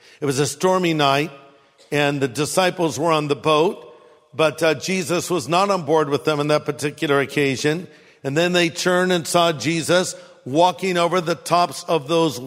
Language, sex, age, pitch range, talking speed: English, male, 50-69, 155-215 Hz, 185 wpm